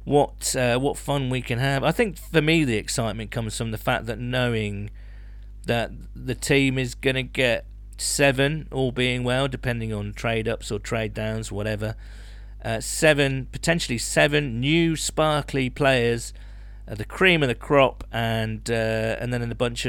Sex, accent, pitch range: male, British, 105-140 Hz